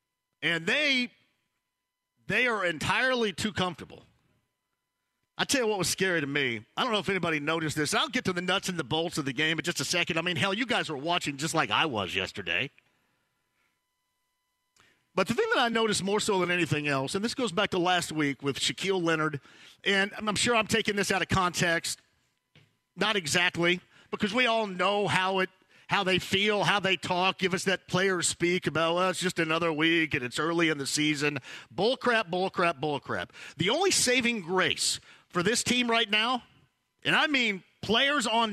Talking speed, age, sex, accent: 195 wpm, 50-69, male, American